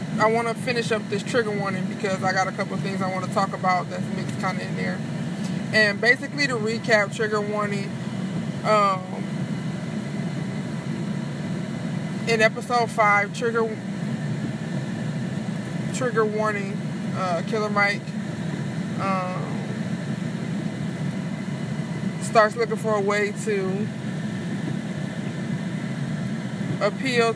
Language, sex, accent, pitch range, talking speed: English, male, American, 185-205 Hz, 105 wpm